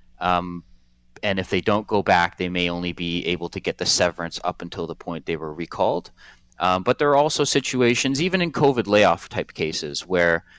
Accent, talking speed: American, 205 wpm